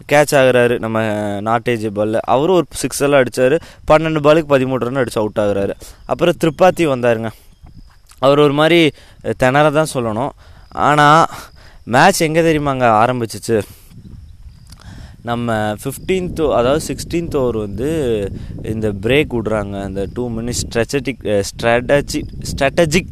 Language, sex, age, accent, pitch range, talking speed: Tamil, male, 20-39, native, 105-145 Hz, 120 wpm